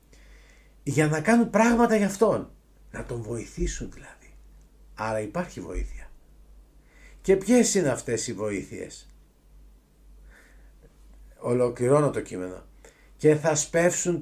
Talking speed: 105 wpm